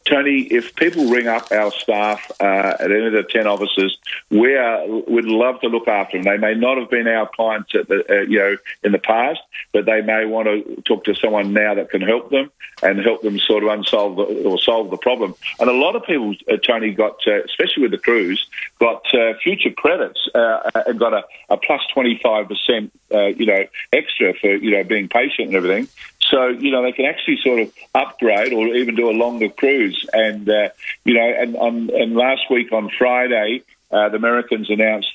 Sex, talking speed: male, 215 wpm